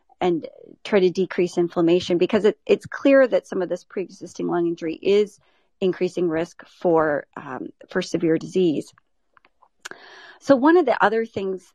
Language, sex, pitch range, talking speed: English, female, 180-215 Hz, 155 wpm